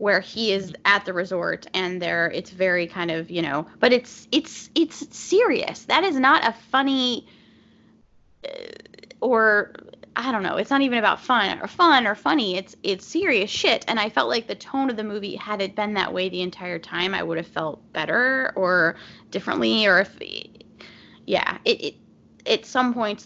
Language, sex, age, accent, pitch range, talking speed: English, female, 10-29, American, 175-250 Hz, 190 wpm